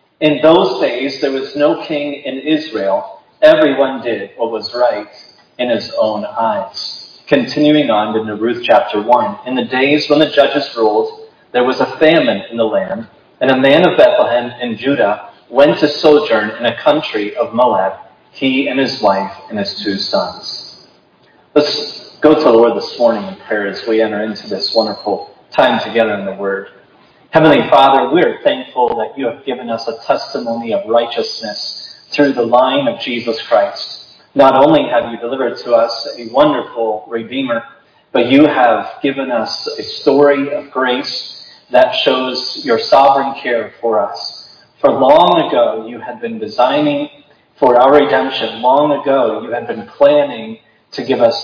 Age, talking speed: 30-49, 170 wpm